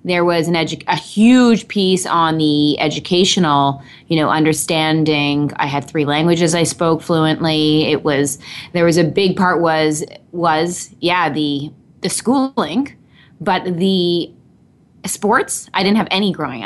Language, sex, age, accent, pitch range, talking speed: English, female, 20-39, American, 155-195 Hz, 150 wpm